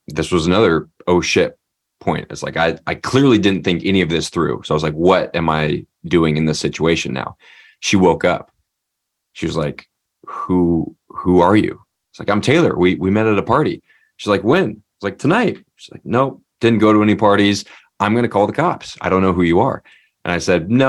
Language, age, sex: English, 20-39, male